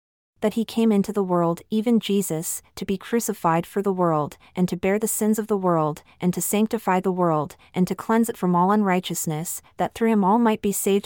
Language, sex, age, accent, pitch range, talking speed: English, female, 30-49, American, 175-210 Hz, 220 wpm